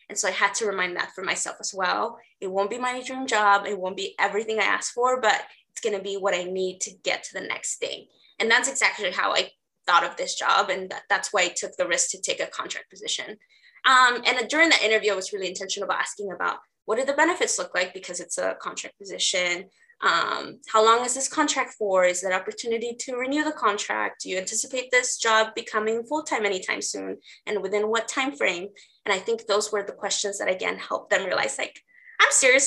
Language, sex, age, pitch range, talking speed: English, female, 20-39, 195-255 Hz, 230 wpm